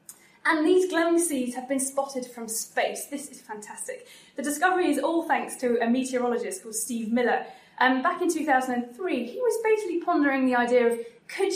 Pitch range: 220-285 Hz